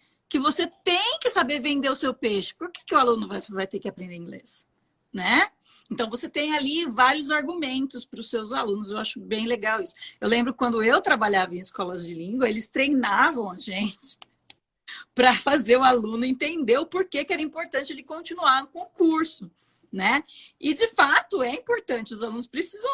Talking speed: 190 wpm